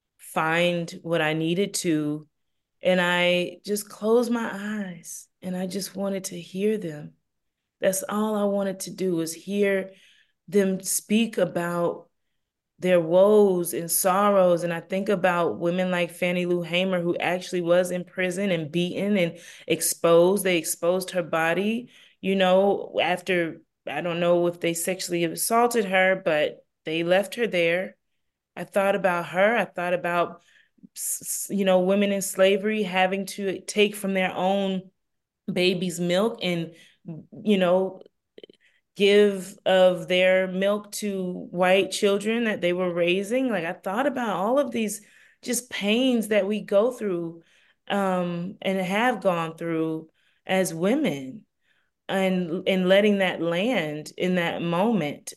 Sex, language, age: female, English, 20-39